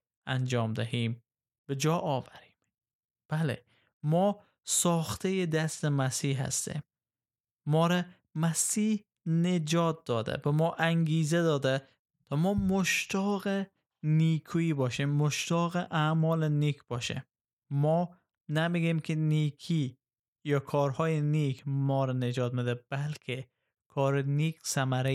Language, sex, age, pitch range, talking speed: Persian, male, 20-39, 135-165 Hz, 105 wpm